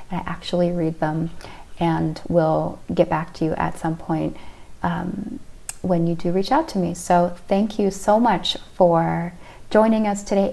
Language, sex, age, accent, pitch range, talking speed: English, female, 30-49, American, 170-195 Hz, 170 wpm